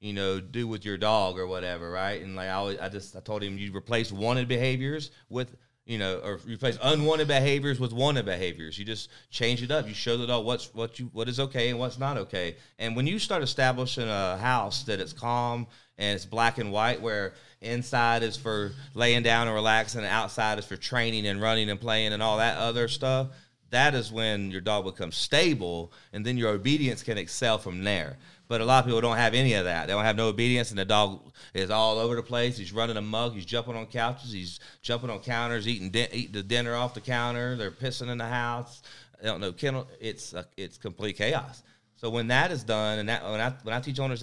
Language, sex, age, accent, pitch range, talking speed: English, male, 30-49, American, 105-125 Hz, 230 wpm